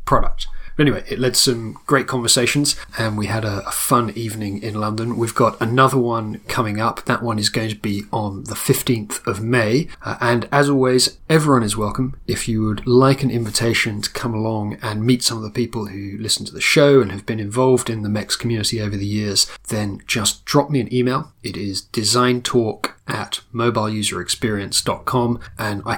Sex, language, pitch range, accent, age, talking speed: male, English, 105-130 Hz, British, 30-49, 195 wpm